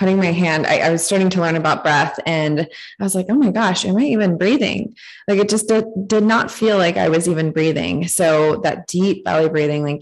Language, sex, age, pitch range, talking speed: English, female, 20-39, 155-190 Hz, 240 wpm